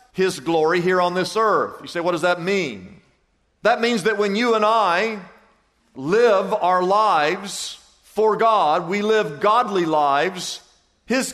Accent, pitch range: American, 190-250 Hz